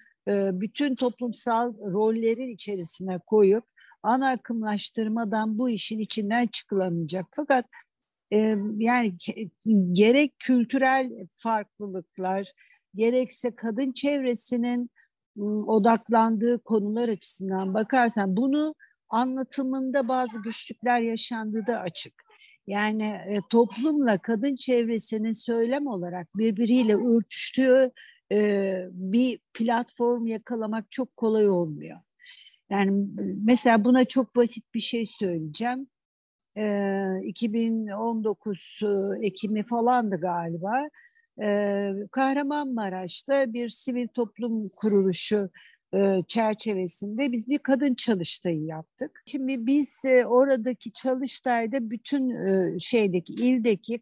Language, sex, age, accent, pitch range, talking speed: Turkish, female, 60-79, native, 205-250 Hz, 80 wpm